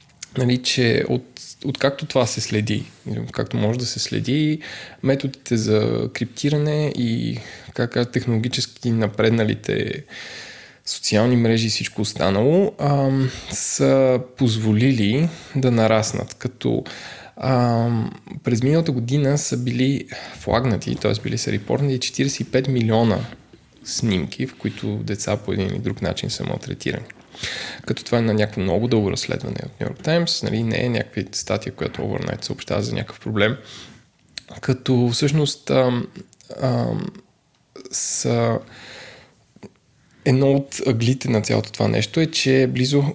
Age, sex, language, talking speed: 20-39, male, Bulgarian, 130 wpm